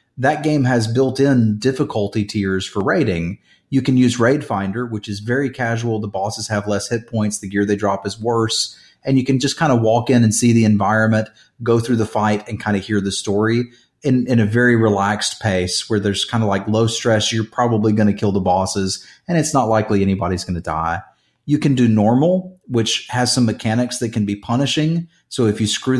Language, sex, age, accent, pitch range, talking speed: English, male, 30-49, American, 105-125 Hz, 220 wpm